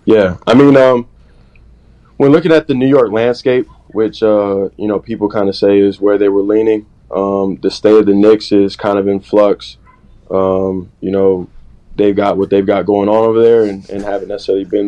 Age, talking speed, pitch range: 20-39, 205 wpm, 100-115 Hz